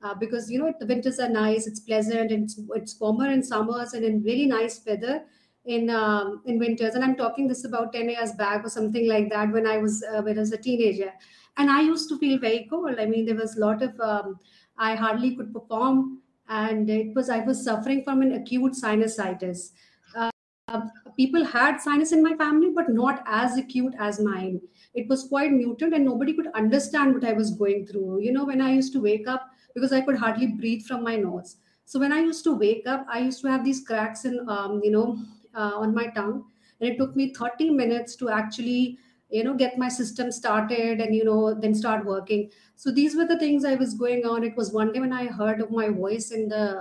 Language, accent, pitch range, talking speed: English, Indian, 215-260 Hz, 230 wpm